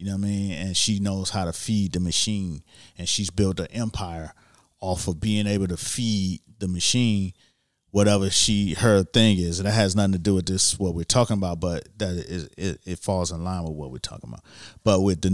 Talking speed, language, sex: 230 wpm, English, male